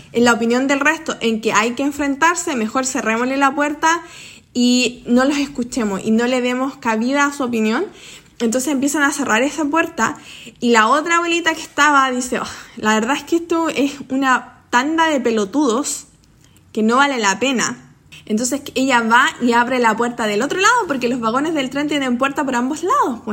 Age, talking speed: 20-39, 195 wpm